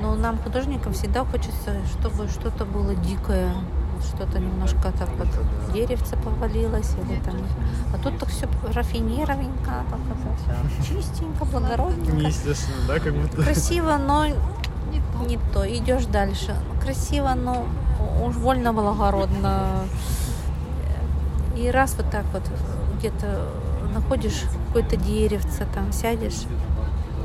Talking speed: 105 wpm